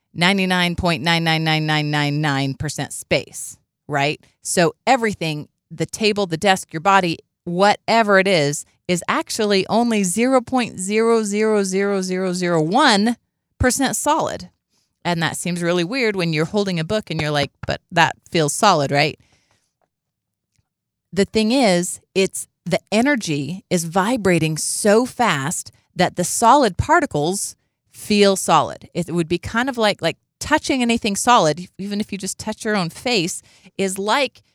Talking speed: 140 wpm